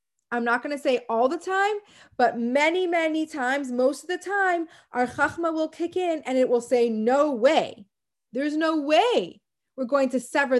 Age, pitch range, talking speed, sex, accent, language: 30-49, 255-350 Hz, 195 wpm, female, American, English